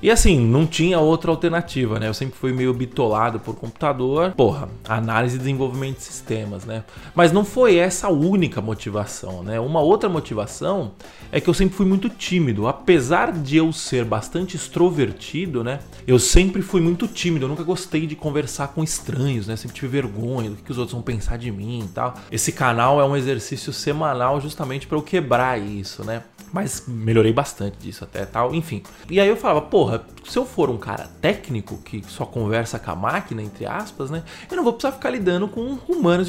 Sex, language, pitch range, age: male, Portuguese, 115-175 Hz, 20-39